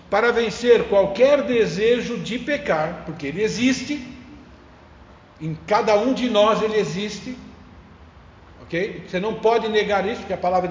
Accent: Brazilian